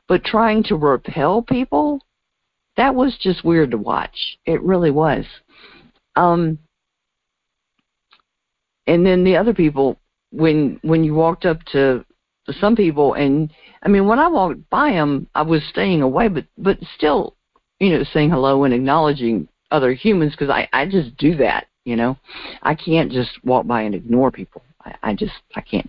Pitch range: 130-180 Hz